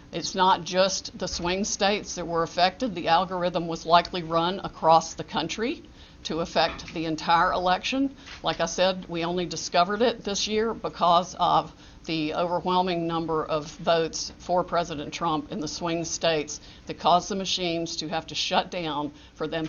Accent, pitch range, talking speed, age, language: American, 160-185 Hz, 170 wpm, 50-69, English